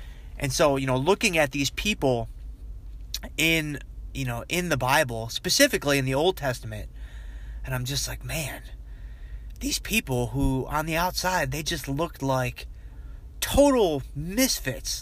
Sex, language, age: male, English, 30-49